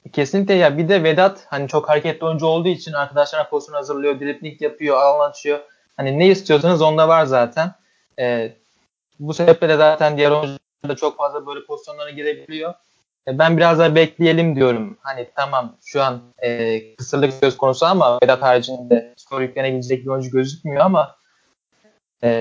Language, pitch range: Turkish, 130-160 Hz